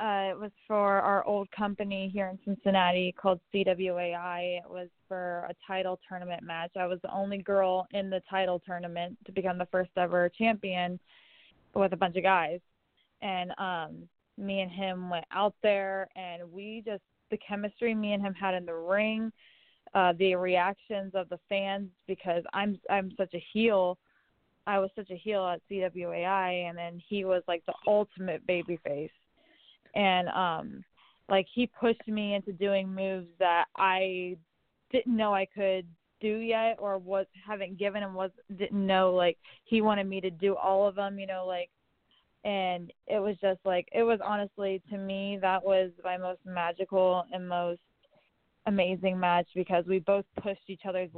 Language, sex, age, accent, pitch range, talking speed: English, female, 20-39, American, 180-200 Hz, 175 wpm